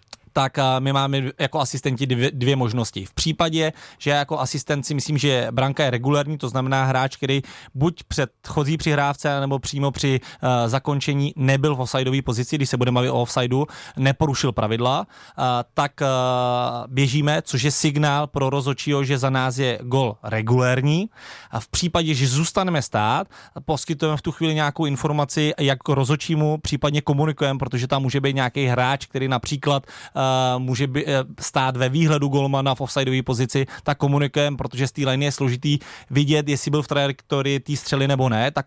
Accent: native